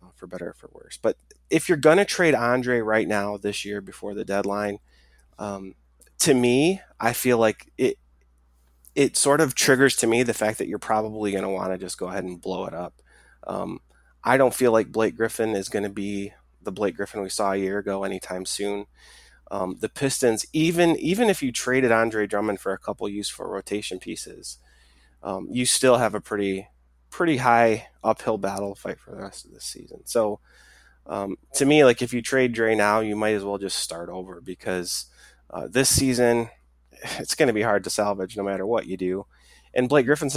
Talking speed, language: 205 wpm, English